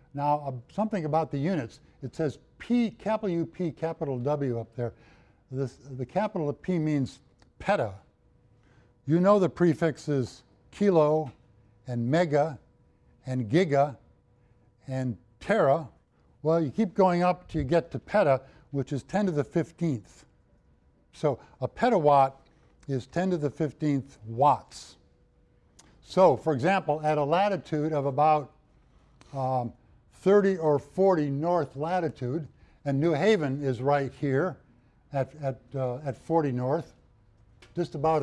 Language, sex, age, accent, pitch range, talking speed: English, male, 60-79, American, 125-160 Hz, 130 wpm